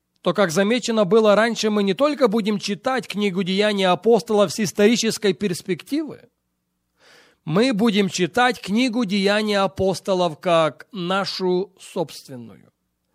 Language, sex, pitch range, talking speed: English, male, 175-220 Hz, 115 wpm